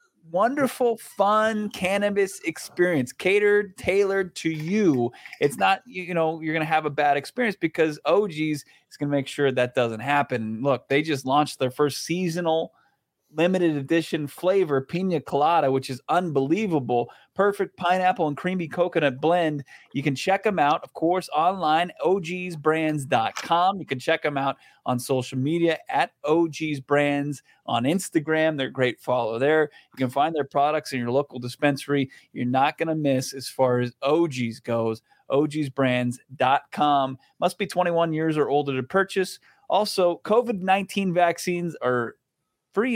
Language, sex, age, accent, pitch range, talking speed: English, male, 30-49, American, 130-170 Hz, 150 wpm